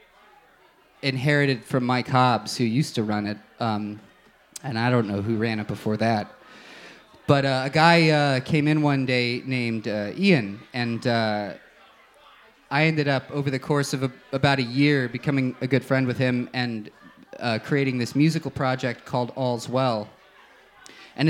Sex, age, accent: male, 30-49, American